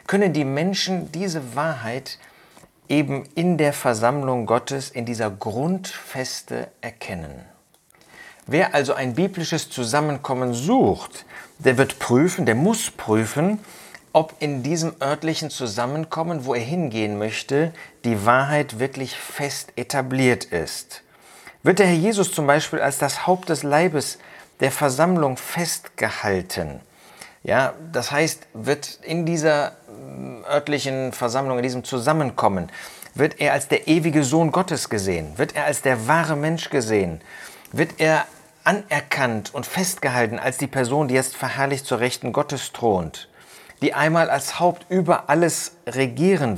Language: German